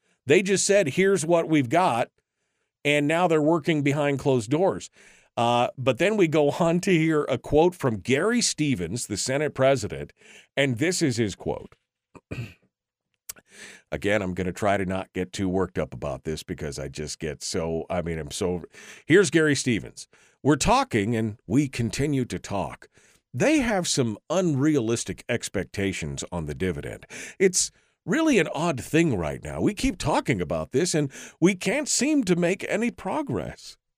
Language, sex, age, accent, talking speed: English, male, 50-69, American, 170 wpm